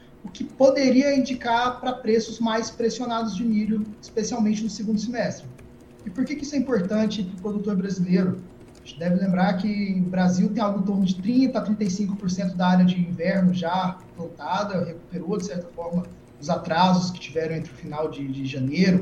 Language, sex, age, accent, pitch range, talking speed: Portuguese, male, 20-39, Brazilian, 170-210 Hz, 190 wpm